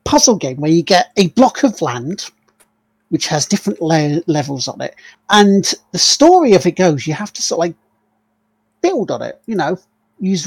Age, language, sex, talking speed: 40-59, English, male, 195 wpm